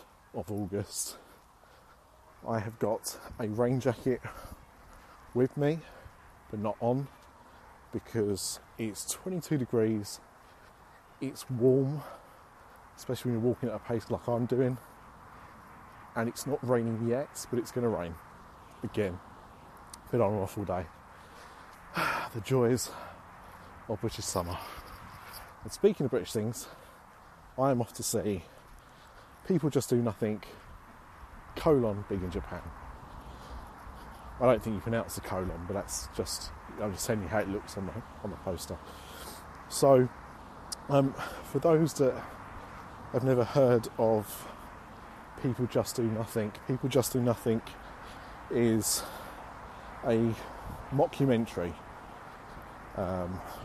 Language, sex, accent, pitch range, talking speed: English, male, British, 95-125 Hz, 125 wpm